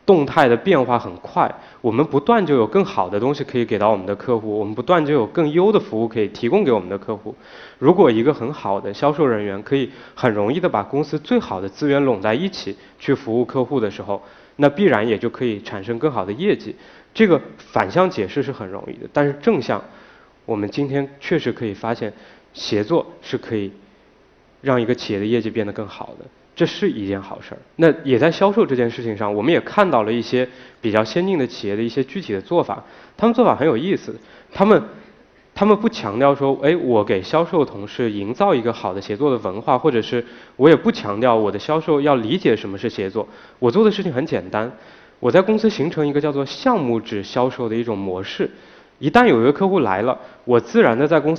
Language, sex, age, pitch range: Chinese, male, 20-39, 110-155 Hz